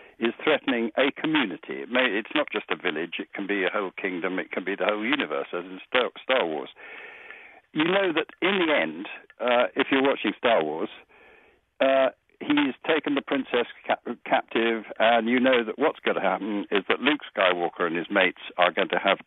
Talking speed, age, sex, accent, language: 195 wpm, 60-79, male, British, English